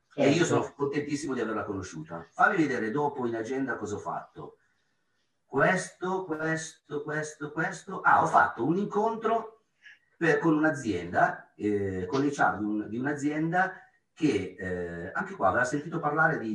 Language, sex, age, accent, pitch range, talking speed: Italian, male, 40-59, native, 105-165 Hz, 155 wpm